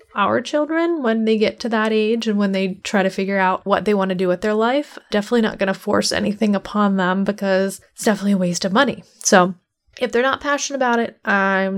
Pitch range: 195-230 Hz